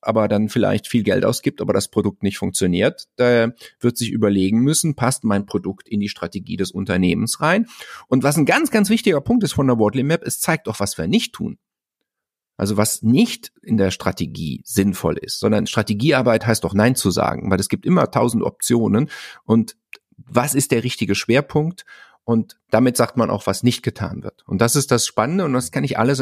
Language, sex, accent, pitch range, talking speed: German, male, German, 100-135 Hz, 205 wpm